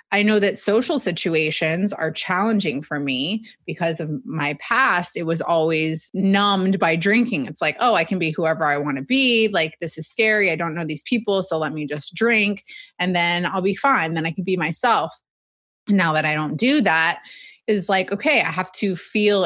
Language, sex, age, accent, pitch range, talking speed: English, female, 20-39, American, 165-220 Hz, 205 wpm